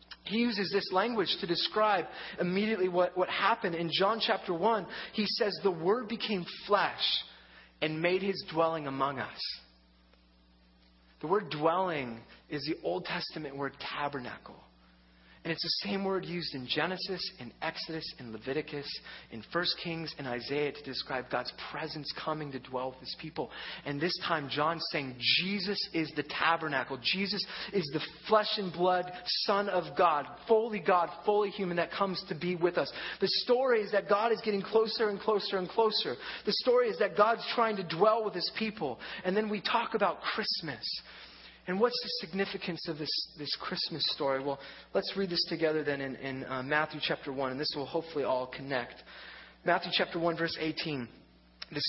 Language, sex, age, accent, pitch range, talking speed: English, male, 30-49, American, 140-195 Hz, 175 wpm